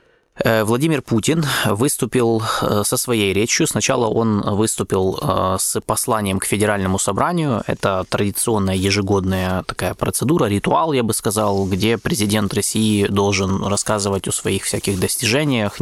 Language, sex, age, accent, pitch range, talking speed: Russian, male, 20-39, native, 100-120 Hz, 120 wpm